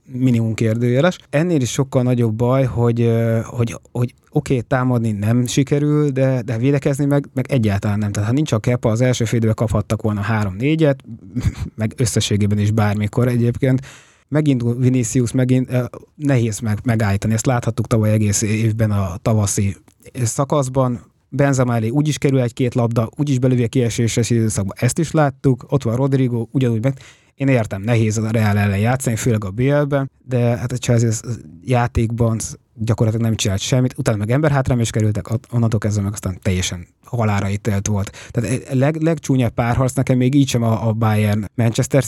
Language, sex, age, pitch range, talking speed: English, male, 20-39, 110-135 Hz, 165 wpm